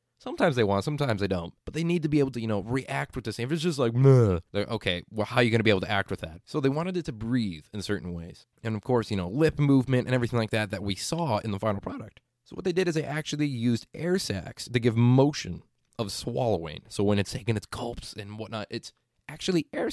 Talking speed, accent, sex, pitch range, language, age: 275 wpm, American, male, 100-140 Hz, English, 20-39